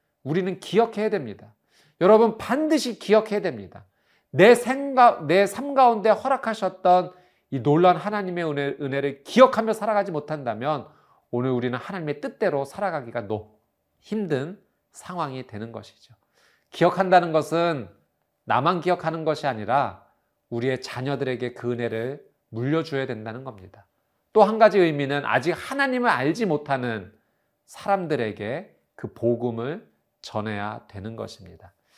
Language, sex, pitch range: Korean, male, 115-175 Hz